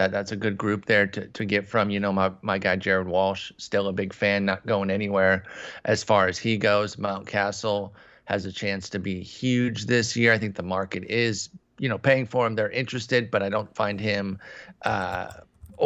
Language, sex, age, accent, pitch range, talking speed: English, male, 30-49, American, 100-120 Hz, 215 wpm